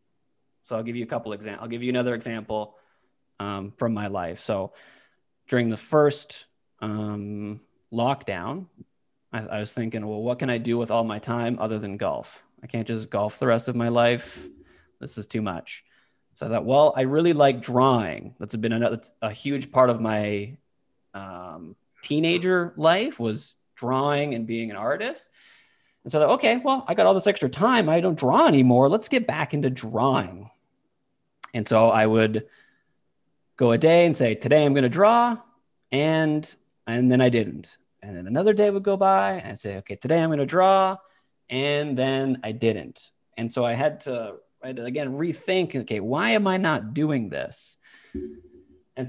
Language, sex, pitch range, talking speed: English, male, 110-150 Hz, 190 wpm